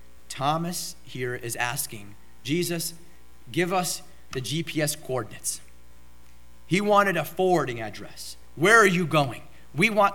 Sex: male